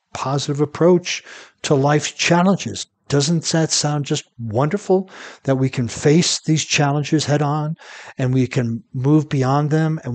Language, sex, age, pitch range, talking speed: English, male, 60-79, 125-150 Hz, 150 wpm